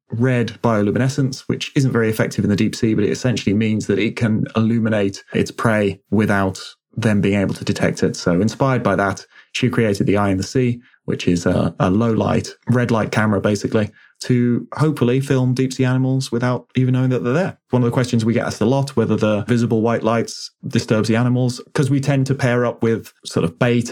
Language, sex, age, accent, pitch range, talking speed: English, male, 20-39, British, 105-125 Hz, 220 wpm